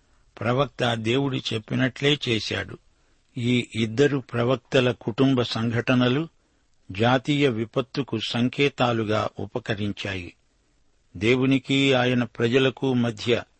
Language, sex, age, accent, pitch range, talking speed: Telugu, male, 60-79, native, 115-135 Hz, 75 wpm